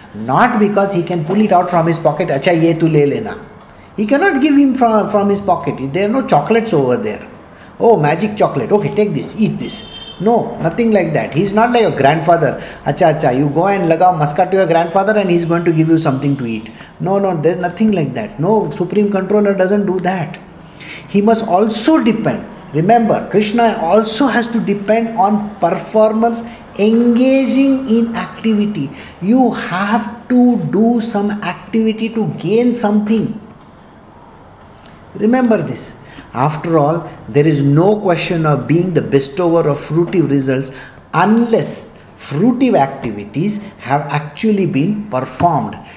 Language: English